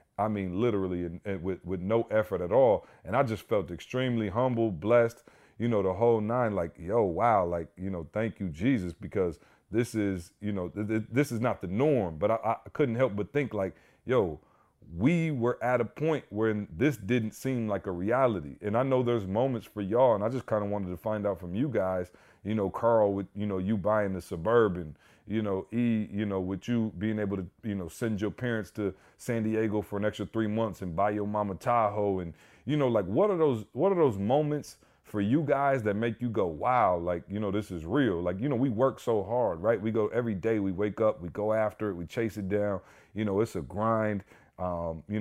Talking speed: 235 wpm